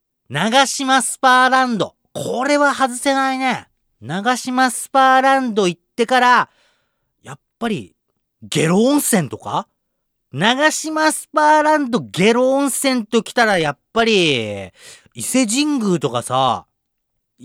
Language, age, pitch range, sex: Japanese, 40-59, 160-265 Hz, male